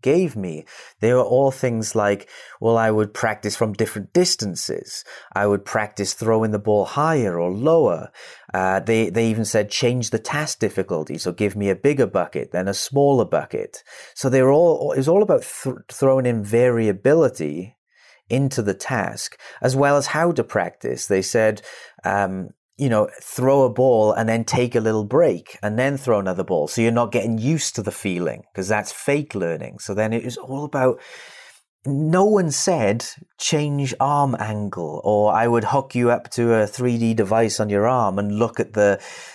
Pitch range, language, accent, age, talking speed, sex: 105-140 Hz, English, British, 30-49, 185 wpm, male